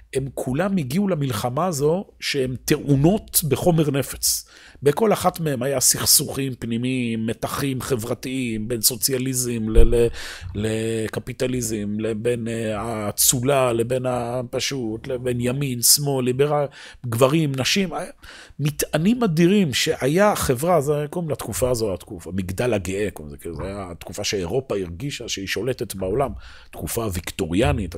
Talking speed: 130 wpm